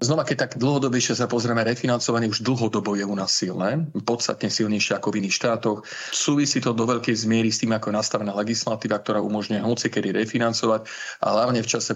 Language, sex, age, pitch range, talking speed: Slovak, male, 40-59, 110-120 Hz, 195 wpm